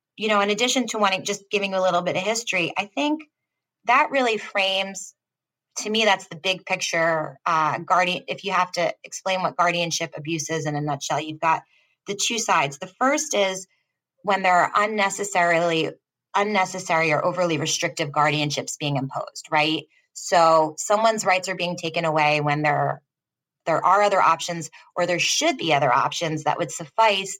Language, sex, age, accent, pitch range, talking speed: English, female, 20-39, American, 155-195 Hz, 175 wpm